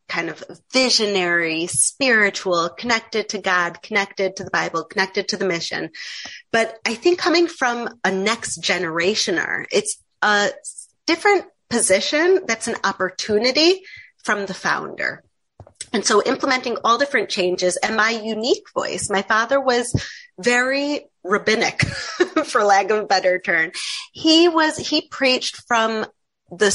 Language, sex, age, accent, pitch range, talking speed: English, female, 30-49, American, 195-285 Hz, 135 wpm